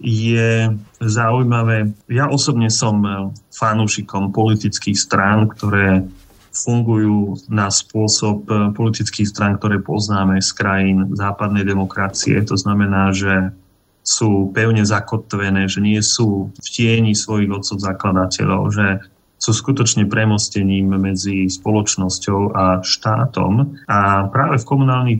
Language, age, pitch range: Slovak, 30-49, 95-110 Hz